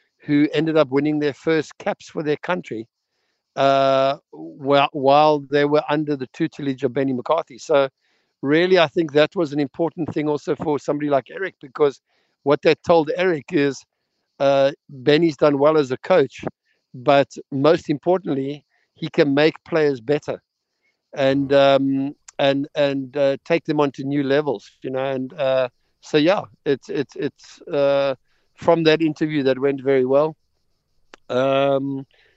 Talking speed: 155 wpm